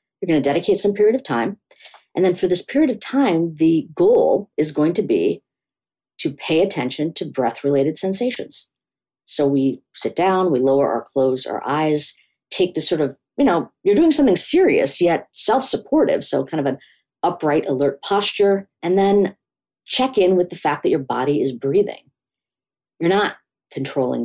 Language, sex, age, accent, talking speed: English, female, 40-59, American, 175 wpm